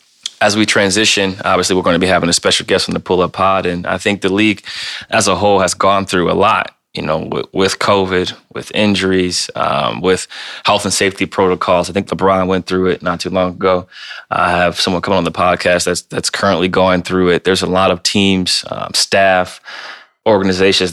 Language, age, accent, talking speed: English, 20-39, American, 210 wpm